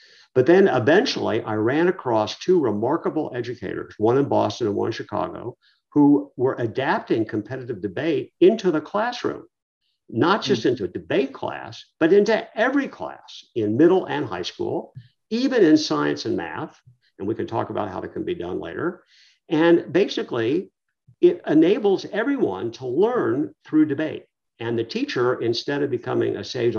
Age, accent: 50-69, American